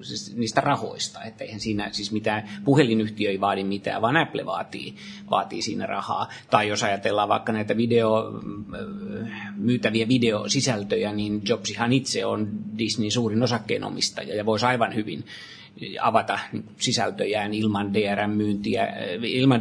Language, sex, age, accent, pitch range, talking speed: Finnish, male, 30-49, native, 105-125 Hz, 120 wpm